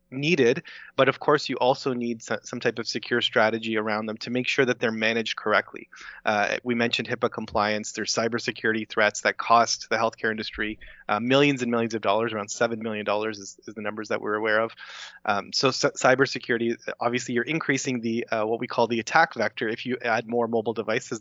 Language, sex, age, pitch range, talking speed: English, male, 30-49, 110-130 Hz, 205 wpm